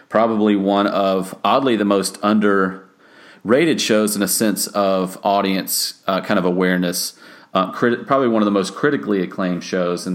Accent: American